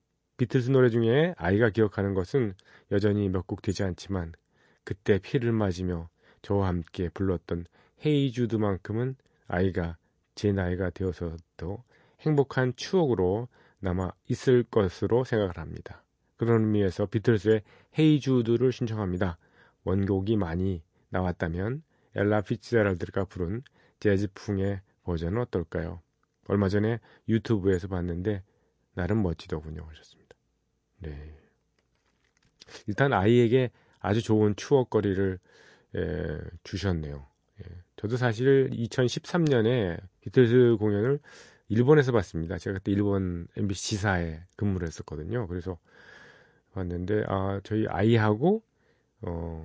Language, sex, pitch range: Korean, male, 90-120 Hz